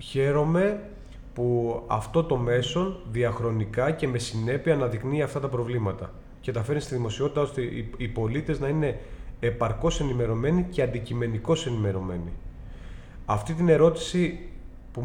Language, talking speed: Greek, 130 wpm